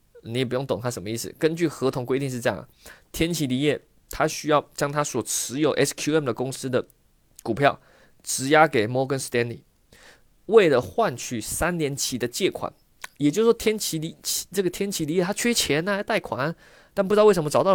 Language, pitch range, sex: Chinese, 130-170 Hz, male